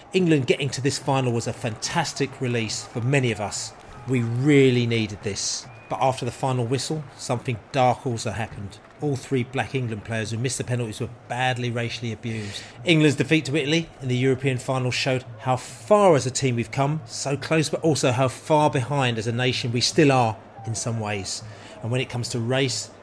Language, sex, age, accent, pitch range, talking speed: English, male, 30-49, British, 120-150 Hz, 200 wpm